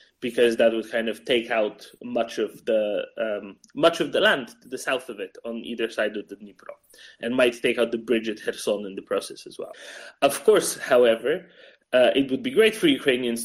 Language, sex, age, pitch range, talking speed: English, male, 20-39, 115-160 Hz, 220 wpm